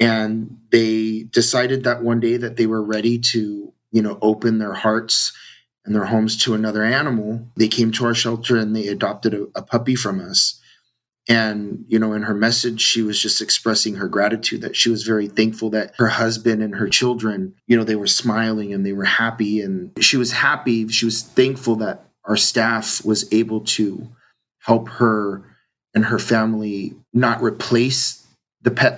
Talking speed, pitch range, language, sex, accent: 185 wpm, 105-115 Hz, English, male, American